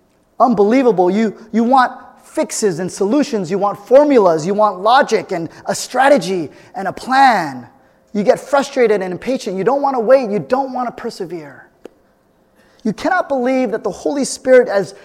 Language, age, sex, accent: English, 30-49, male, American